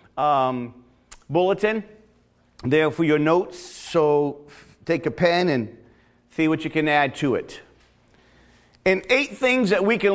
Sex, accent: male, American